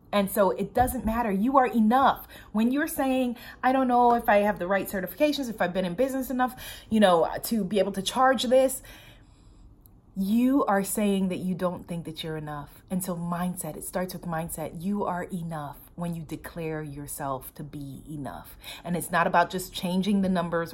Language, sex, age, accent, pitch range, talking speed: English, female, 30-49, American, 155-225 Hz, 200 wpm